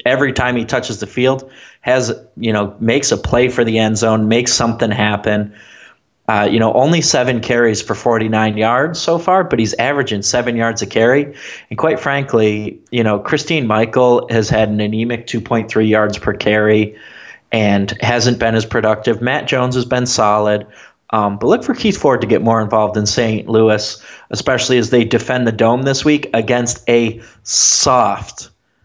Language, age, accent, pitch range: English, 30-49, American, 105-125 Hz